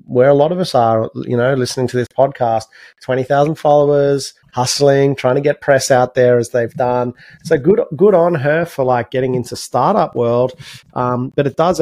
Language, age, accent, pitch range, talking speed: English, 30-49, Australian, 115-140 Hz, 205 wpm